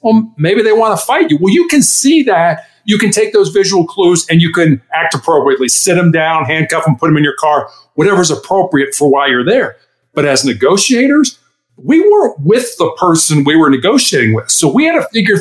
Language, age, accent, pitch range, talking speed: English, 50-69, American, 145-200 Hz, 220 wpm